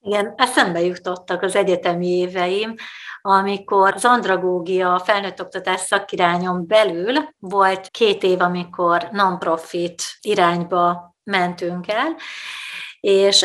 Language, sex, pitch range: Hungarian, female, 180-215 Hz